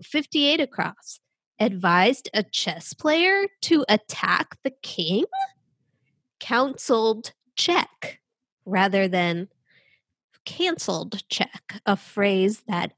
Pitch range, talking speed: 190-300 Hz, 90 wpm